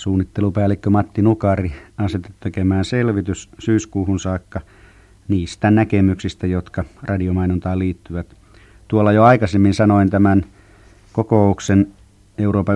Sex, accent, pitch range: male, native, 90-105 Hz